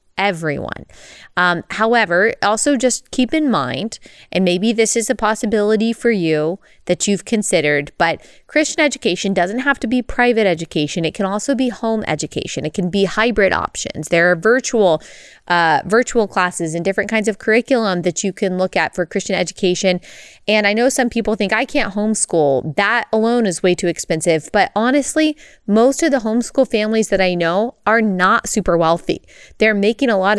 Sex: female